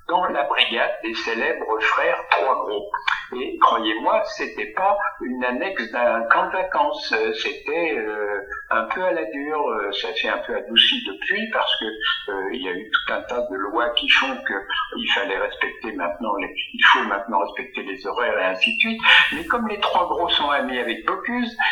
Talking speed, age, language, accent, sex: 195 wpm, 60-79, English, French, male